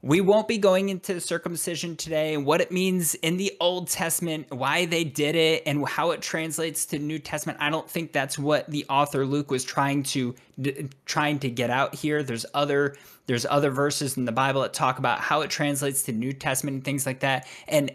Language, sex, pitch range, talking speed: English, male, 140-175 Hz, 215 wpm